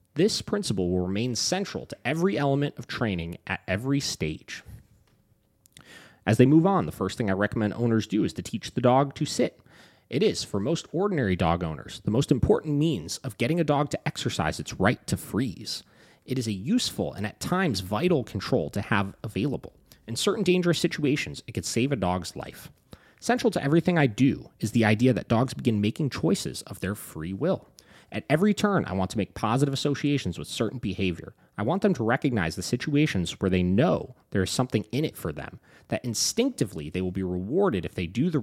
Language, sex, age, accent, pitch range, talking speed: English, male, 30-49, American, 105-165 Hz, 205 wpm